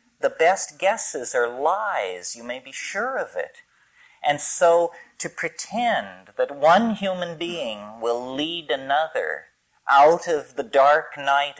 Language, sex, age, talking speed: English, male, 40-59, 140 wpm